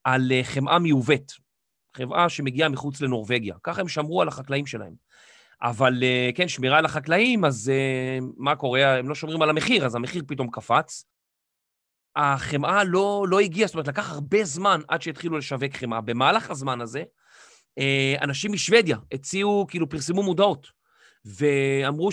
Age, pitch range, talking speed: 30-49, 135-185 Hz, 145 wpm